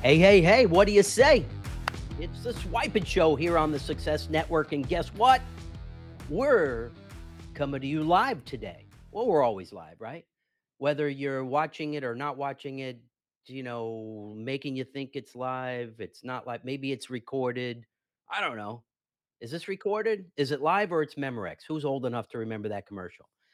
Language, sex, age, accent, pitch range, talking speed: English, male, 40-59, American, 115-150 Hz, 180 wpm